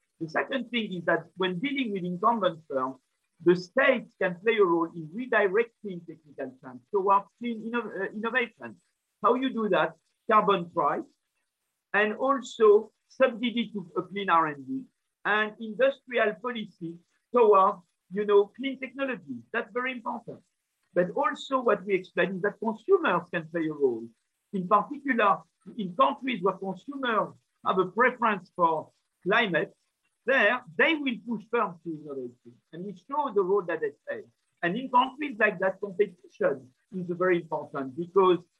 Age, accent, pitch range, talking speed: 50-69, French, 180-240 Hz, 150 wpm